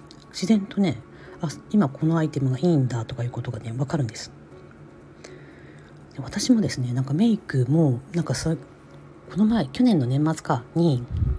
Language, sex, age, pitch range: Japanese, female, 40-59, 130-180 Hz